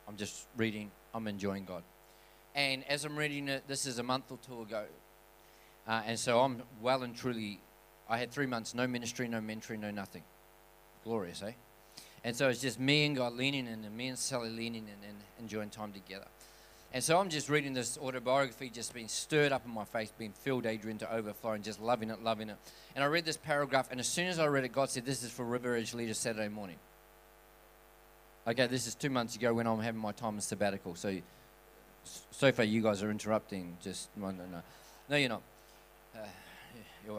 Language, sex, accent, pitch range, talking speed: English, male, Australian, 100-130 Hz, 215 wpm